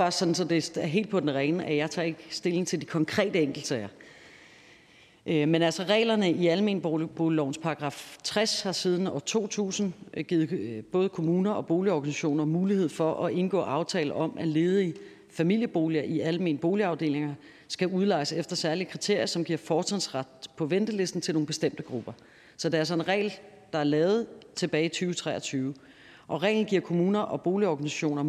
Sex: female